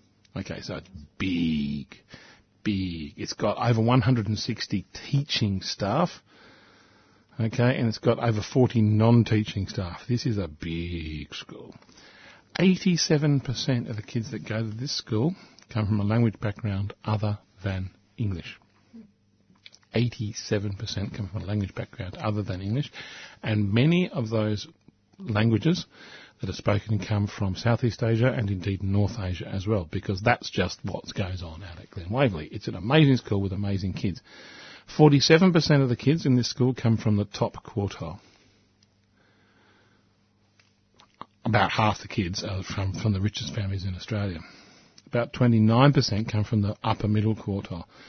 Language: English